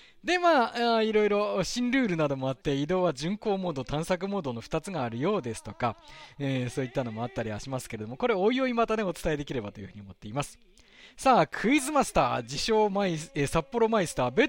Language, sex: Japanese, male